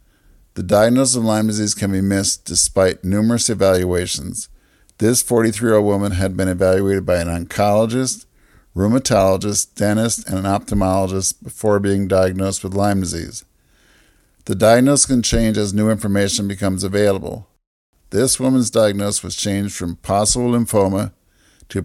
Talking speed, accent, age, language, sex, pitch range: 135 wpm, American, 50-69, English, male, 95-110 Hz